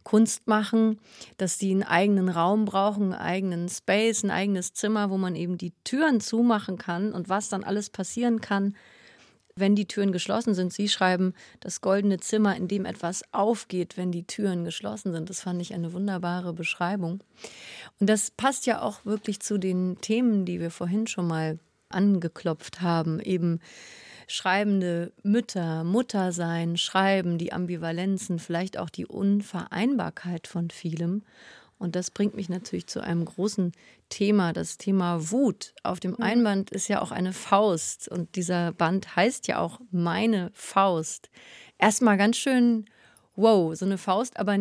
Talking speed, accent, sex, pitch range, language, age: 160 wpm, German, female, 180-215 Hz, German, 30-49